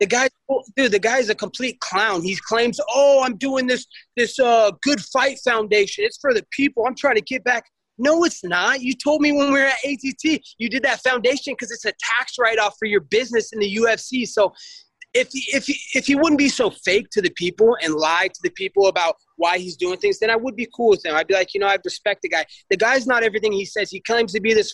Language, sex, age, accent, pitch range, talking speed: English, male, 20-39, American, 200-270 Hz, 250 wpm